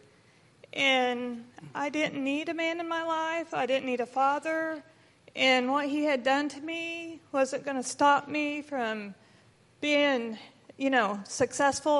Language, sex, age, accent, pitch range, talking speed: English, female, 40-59, American, 230-285 Hz, 155 wpm